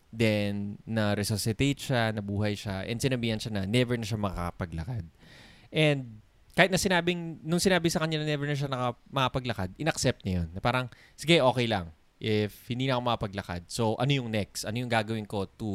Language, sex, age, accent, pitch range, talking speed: Filipino, male, 20-39, native, 105-150 Hz, 180 wpm